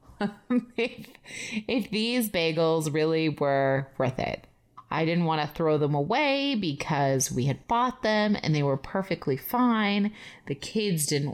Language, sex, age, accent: English, female, 30-49, American